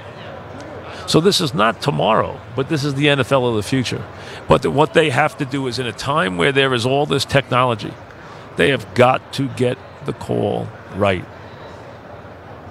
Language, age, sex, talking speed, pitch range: English, 50-69, male, 180 wpm, 105-130 Hz